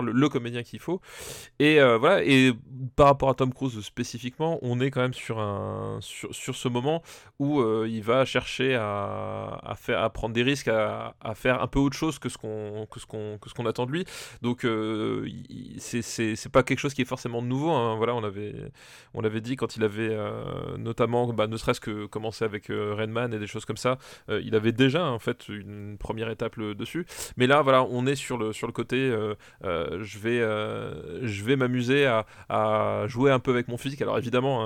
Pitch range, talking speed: 110-130 Hz, 235 wpm